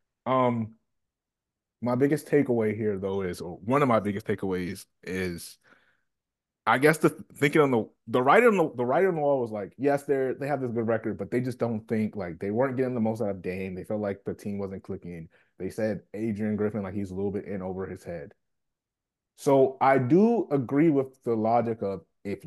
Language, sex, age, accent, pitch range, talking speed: English, male, 30-49, American, 100-130 Hz, 215 wpm